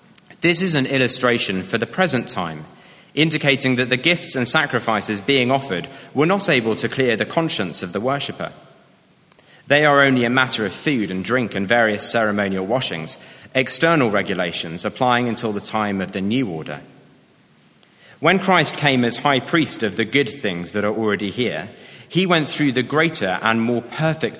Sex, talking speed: male, 175 wpm